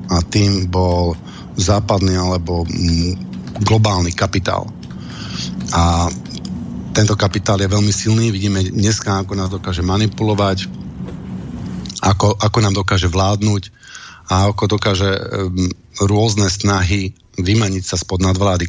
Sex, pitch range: male, 95-110 Hz